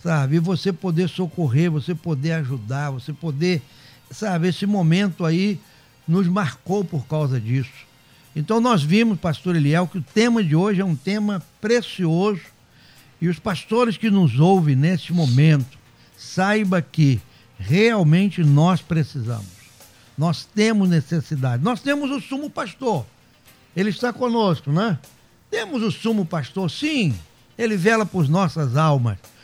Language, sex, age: Portuguese, male, 60-79